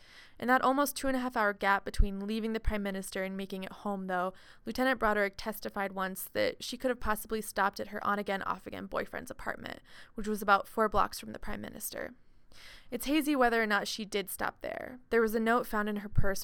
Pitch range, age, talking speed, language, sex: 190-220 Hz, 20-39, 210 wpm, English, female